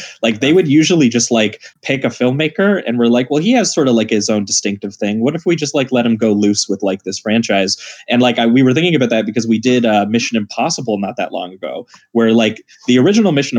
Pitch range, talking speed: 105-130 Hz, 255 wpm